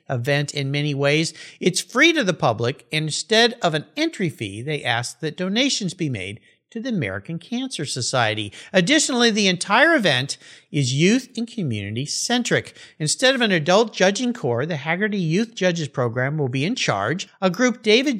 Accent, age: American, 50-69